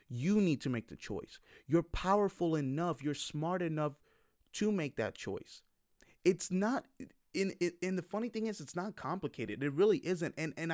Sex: male